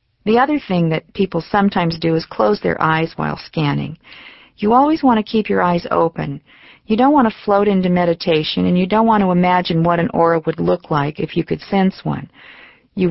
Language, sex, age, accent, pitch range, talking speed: English, female, 50-69, American, 155-205 Hz, 210 wpm